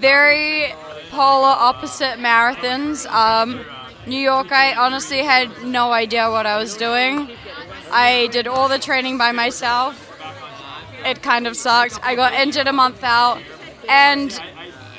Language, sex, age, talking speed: English, female, 20-39, 135 wpm